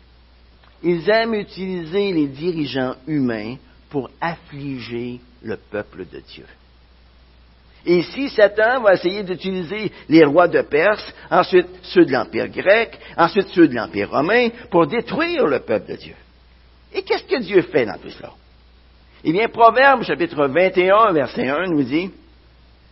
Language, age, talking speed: French, 60-79, 145 wpm